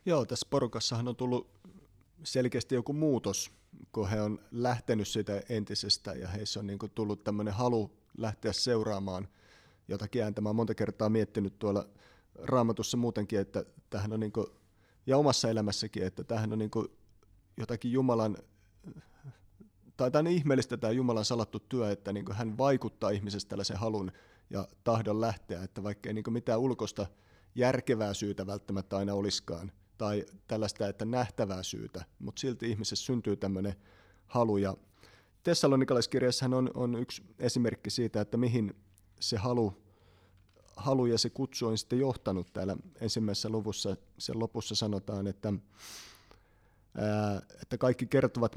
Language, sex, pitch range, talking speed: Finnish, male, 100-120 Hz, 130 wpm